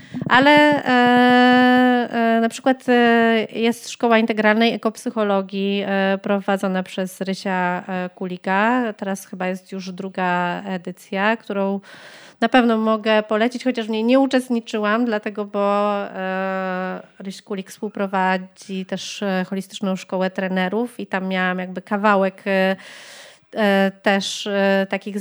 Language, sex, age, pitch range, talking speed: Polish, female, 30-49, 195-240 Hz, 115 wpm